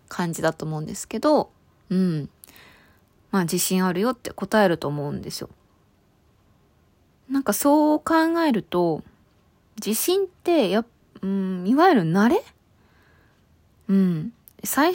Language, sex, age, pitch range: Japanese, female, 20-39, 180-235 Hz